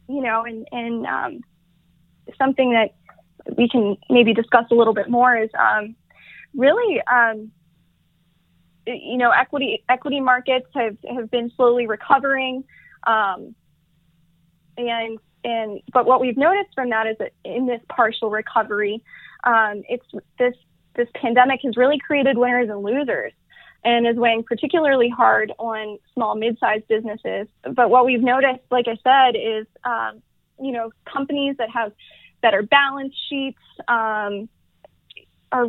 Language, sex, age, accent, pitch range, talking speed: English, female, 20-39, American, 225-260 Hz, 140 wpm